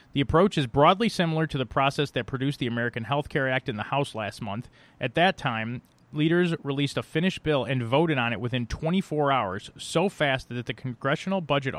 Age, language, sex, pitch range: 30-49, English, male, 120-150 Hz